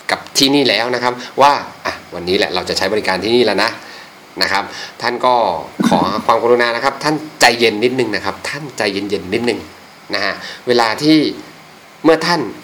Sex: male